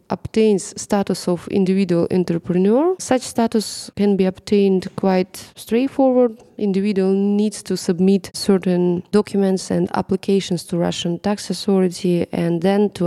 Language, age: English, 20-39